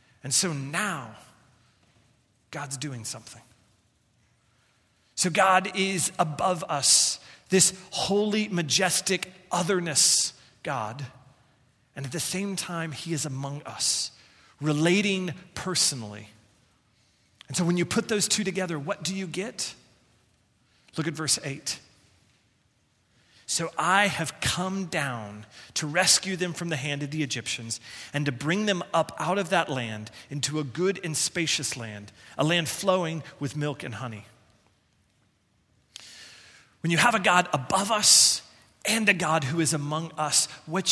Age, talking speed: 30-49, 140 wpm